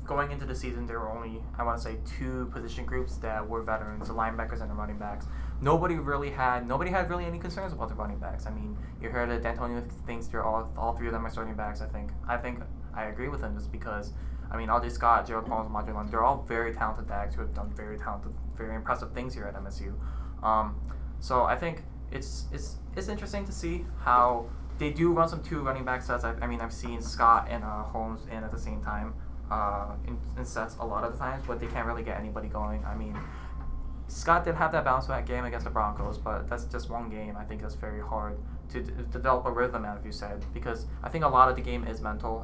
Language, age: English, 20-39